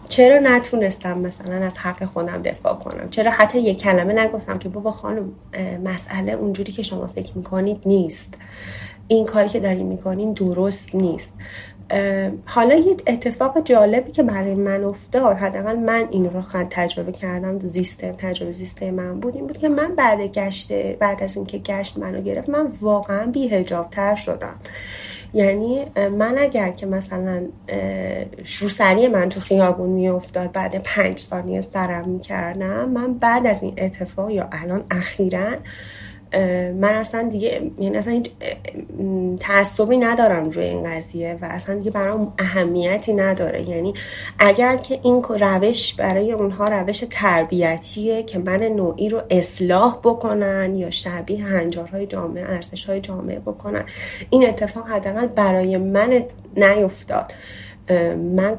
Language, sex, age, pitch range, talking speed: Persian, female, 30-49, 180-215 Hz, 135 wpm